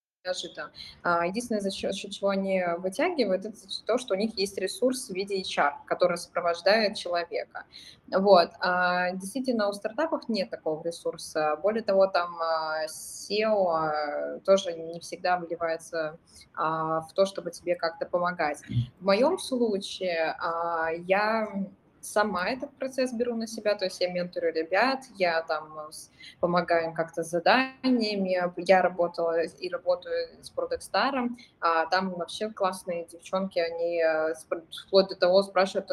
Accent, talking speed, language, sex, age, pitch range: native, 130 wpm, Russian, female, 20-39, 175-215 Hz